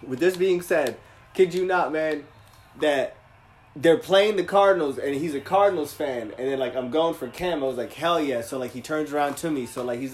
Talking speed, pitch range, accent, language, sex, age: 235 wpm, 140-200 Hz, American, English, male, 20-39